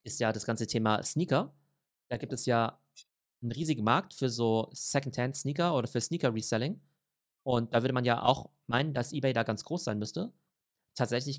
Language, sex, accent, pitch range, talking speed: German, male, German, 115-140 Hz, 180 wpm